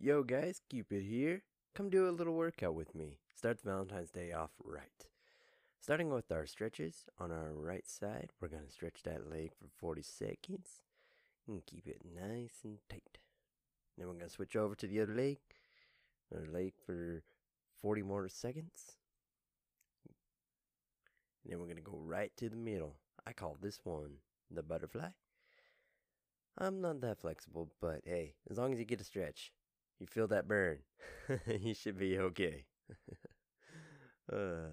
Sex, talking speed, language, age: male, 160 wpm, English, 20-39